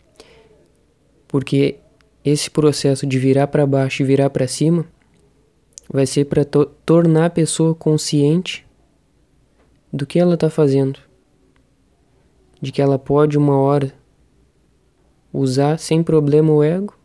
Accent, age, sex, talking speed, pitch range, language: Brazilian, 20-39, male, 120 wpm, 135-155 Hz, Portuguese